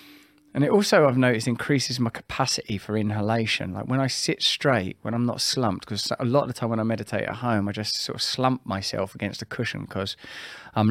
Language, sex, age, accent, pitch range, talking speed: English, male, 20-39, British, 100-120 Hz, 225 wpm